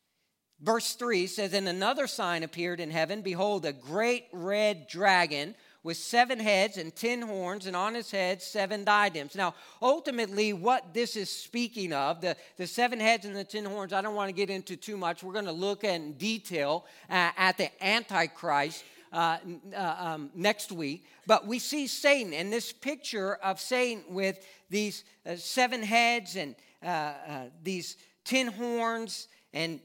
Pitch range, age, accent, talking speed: 180-220 Hz, 50-69, American, 170 wpm